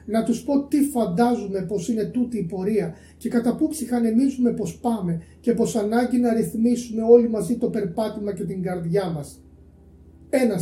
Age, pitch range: 30-49, 180-240 Hz